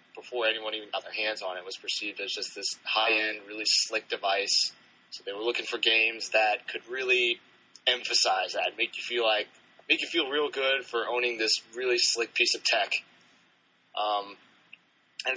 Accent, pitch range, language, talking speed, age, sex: American, 105-130 Hz, English, 185 wpm, 20-39, male